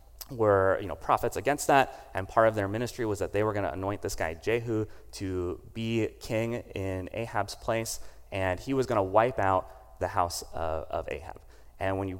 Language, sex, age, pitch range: English, male, 30-49, 95-115 Hz